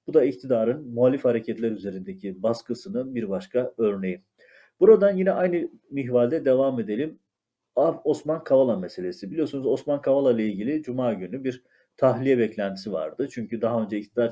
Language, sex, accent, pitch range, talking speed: Turkish, male, native, 115-160 Hz, 145 wpm